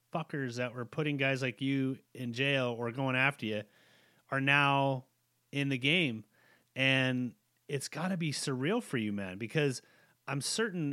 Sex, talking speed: male, 165 wpm